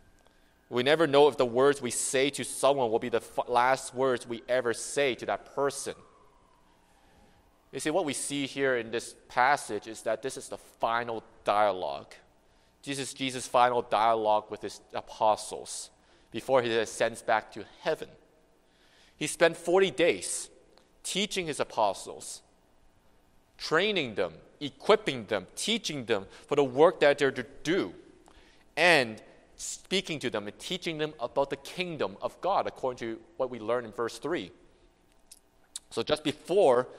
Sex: male